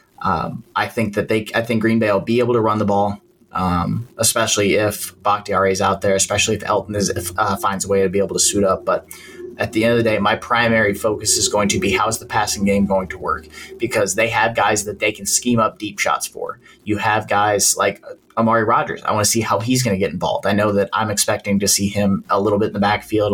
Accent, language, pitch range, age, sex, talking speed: American, English, 100-115 Hz, 30-49, male, 260 wpm